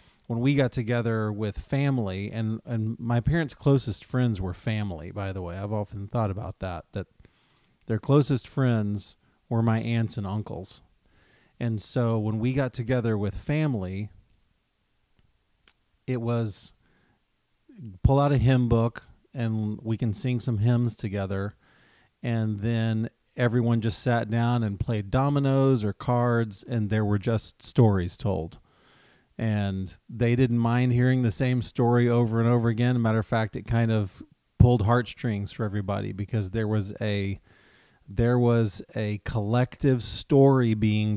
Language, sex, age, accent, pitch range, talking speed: English, male, 40-59, American, 105-120 Hz, 150 wpm